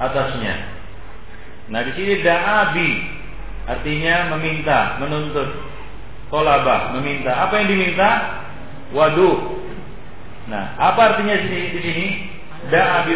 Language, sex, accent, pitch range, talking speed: Indonesian, male, native, 125-175 Hz, 90 wpm